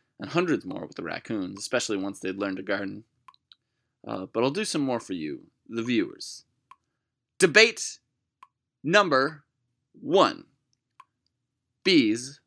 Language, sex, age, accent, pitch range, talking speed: English, male, 20-39, American, 115-170 Hz, 125 wpm